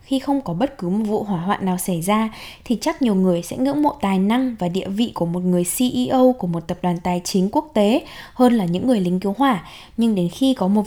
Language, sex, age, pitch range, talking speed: Vietnamese, female, 10-29, 185-255 Hz, 265 wpm